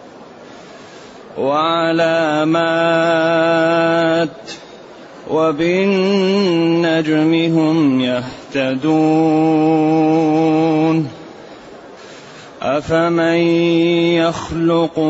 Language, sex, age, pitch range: Arabic, male, 30-49, 160-175 Hz